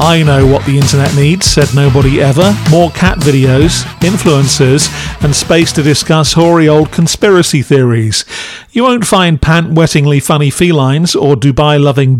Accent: British